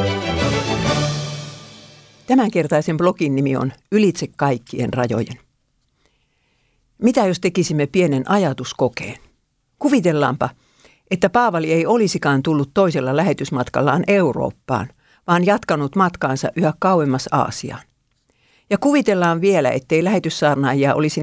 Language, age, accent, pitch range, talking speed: Finnish, 50-69, native, 135-185 Hz, 95 wpm